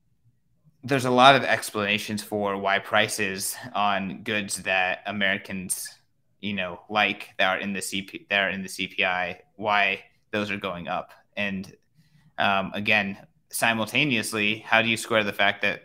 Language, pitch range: English, 100-115 Hz